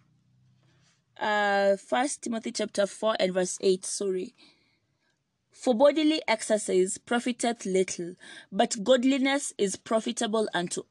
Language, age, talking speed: English, 20-39, 105 wpm